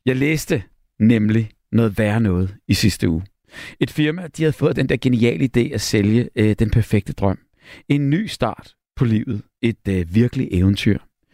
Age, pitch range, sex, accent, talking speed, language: 60-79, 105-145 Hz, male, native, 175 wpm, Danish